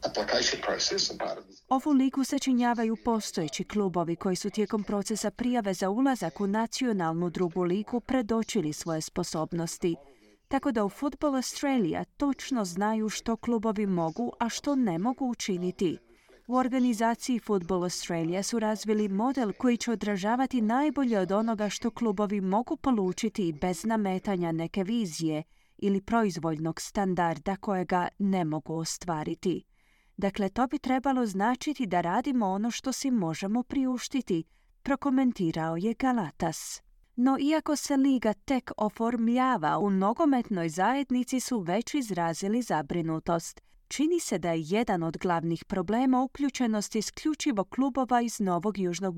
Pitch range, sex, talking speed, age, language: 180-250 Hz, female, 130 wpm, 30-49, Croatian